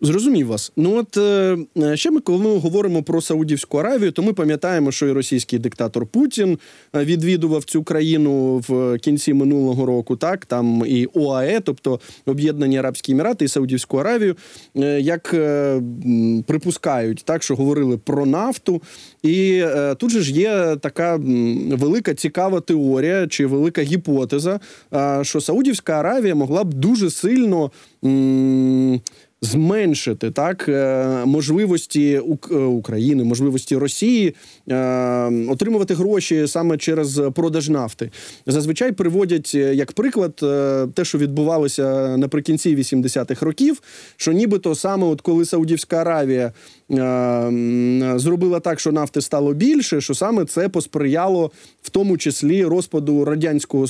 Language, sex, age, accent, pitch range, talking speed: Ukrainian, male, 20-39, native, 135-170 Hz, 125 wpm